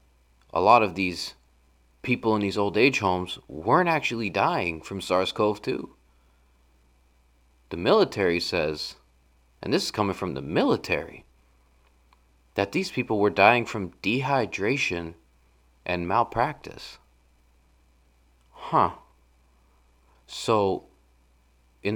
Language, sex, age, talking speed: English, male, 30-49, 100 wpm